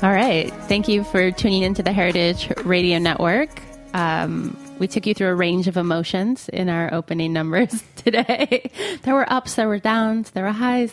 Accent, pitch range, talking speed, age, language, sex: American, 175-215 Hz, 185 wpm, 20-39, English, female